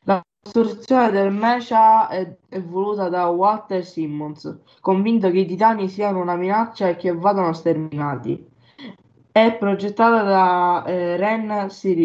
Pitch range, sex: 175-205 Hz, female